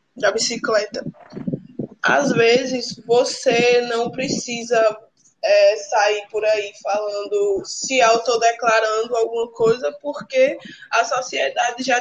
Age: 20-39